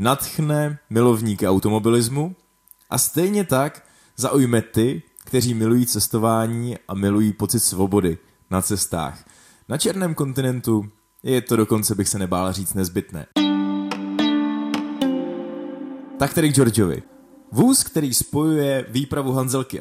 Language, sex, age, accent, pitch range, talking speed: Czech, male, 20-39, native, 100-135 Hz, 110 wpm